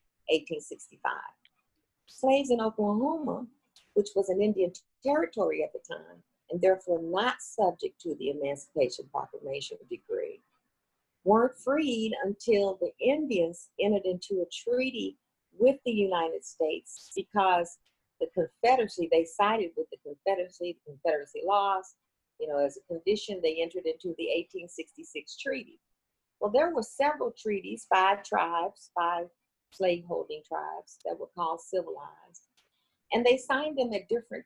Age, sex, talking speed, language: 50-69, female, 135 wpm, English